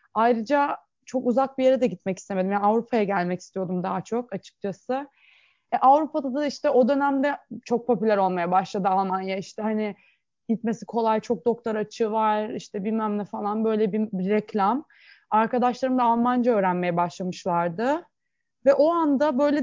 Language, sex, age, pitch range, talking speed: Turkish, female, 20-39, 210-280 Hz, 155 wpm